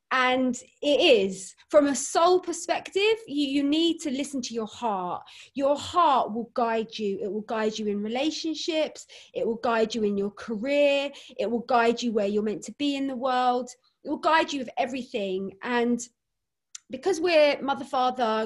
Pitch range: 230-300 Hz